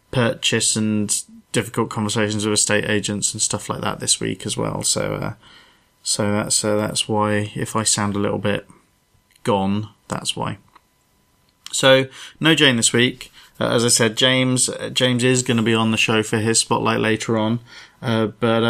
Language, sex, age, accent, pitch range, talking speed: English, male, 20-39, British, 105-135 Hz, 185 wpm